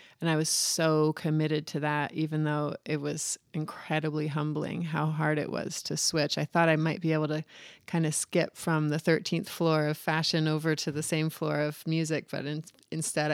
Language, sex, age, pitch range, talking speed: English, female, 30-49, 150-165 Hz, 200 wpm